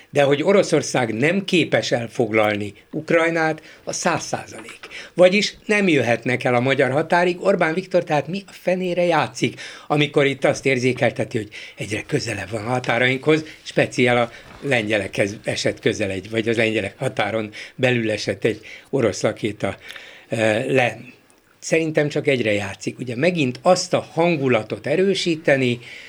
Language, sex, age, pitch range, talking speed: Hungarian, male, 60-79, 125-170 Hz, 135 wpm